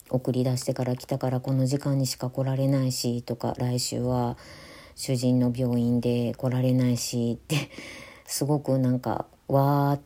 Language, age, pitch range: Japanese, 40-59, 125-145 Hz